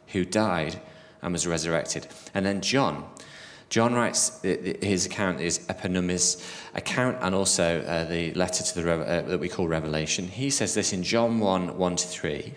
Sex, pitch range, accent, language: male, 90-120 Hz, British, English